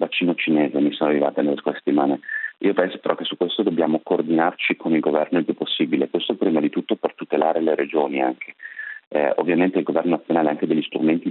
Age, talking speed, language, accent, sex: 40-59, 210 wpm, Italian, native, male